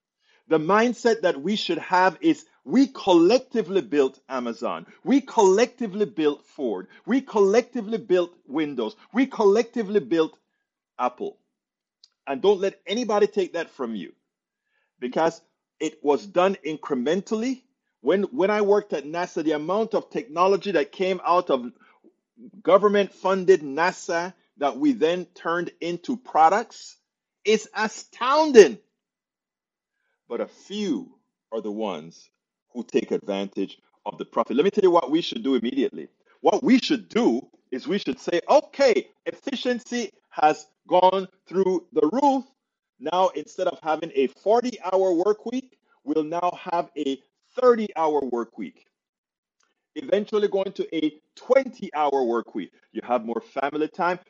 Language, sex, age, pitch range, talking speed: English, male, 50-69, 165-235 Hz, 140 wpm